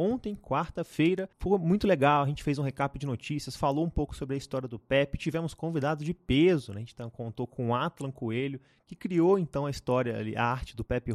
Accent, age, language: Brazilian, 20-39, Portuguese